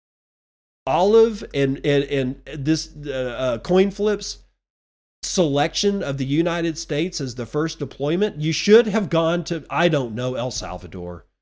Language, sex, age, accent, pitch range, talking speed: English, male, 40-59, American, 125-170 Hz, 140 wpm